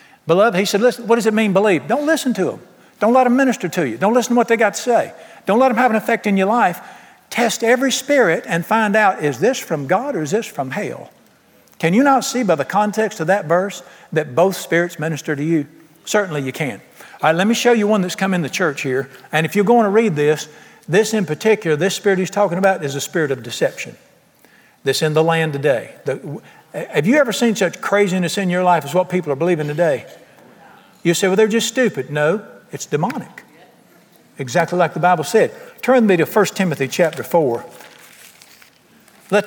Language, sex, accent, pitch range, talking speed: English, male, American, 155-220 Hz, 220 wpm